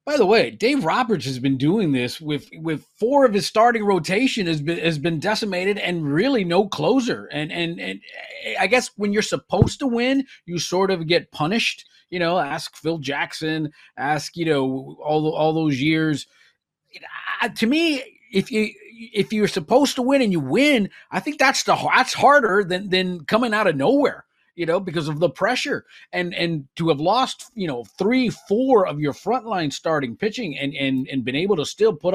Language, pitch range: English, 140-205 Hz